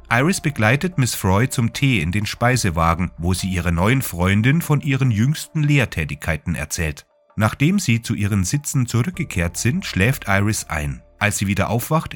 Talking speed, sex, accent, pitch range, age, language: 165 wpm, male, German, 90-130 Hz, 30-49, German